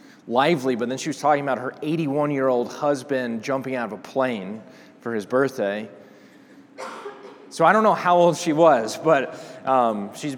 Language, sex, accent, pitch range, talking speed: English, male, American, 130-215 Hz, 180 wpm